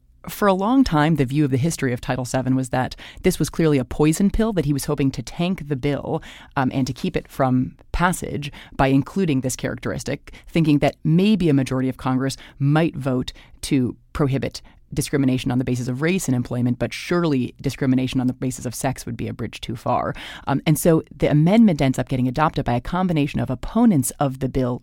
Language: English